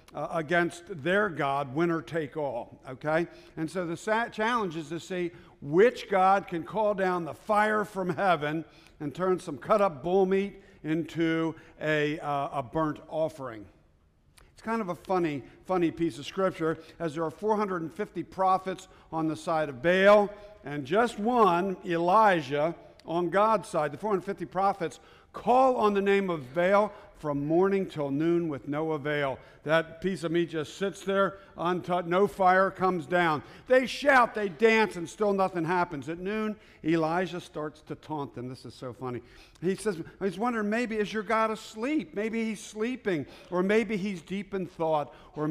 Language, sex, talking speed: English, male, 170 wpm